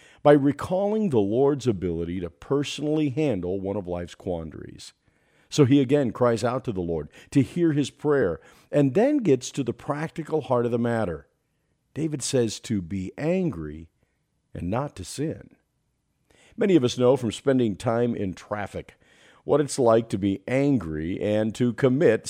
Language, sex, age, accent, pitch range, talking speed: English, male, 50-69, American, 100-150 Hz, 165 wpm